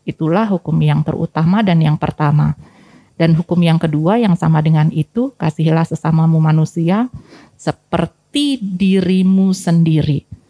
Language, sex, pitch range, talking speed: Indonesian, female, 155-225 Hz, 120 wpm